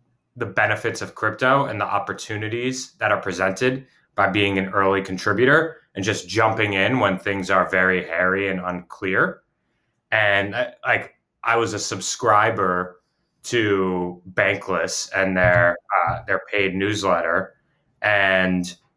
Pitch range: 90-110 Hz